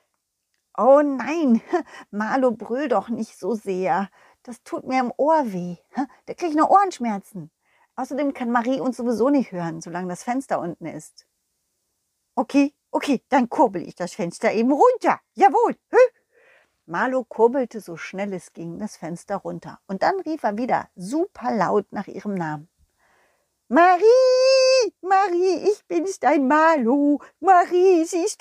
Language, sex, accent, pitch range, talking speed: German, female, German, 195-315 Hz, 145 wpm